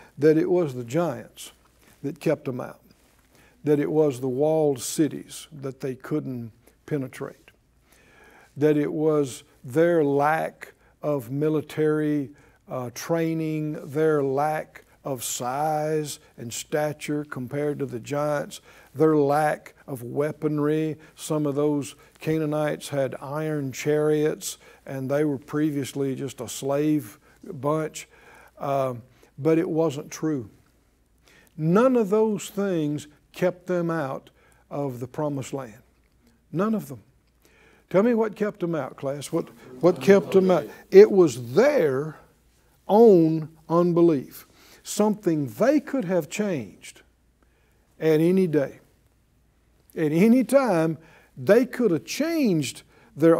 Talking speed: 120 wpm